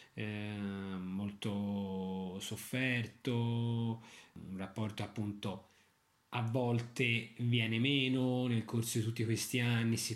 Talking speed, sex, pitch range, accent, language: 95 wpm, male, 100-120 Hz, native, Italian